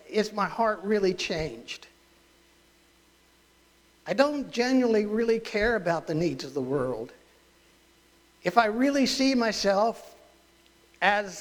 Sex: male